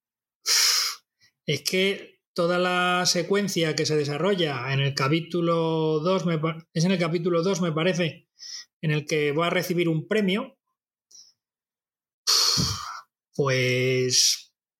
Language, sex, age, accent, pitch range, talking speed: Spanish, male, 30-49, Spanish, 160-205 Hz, 115 wpm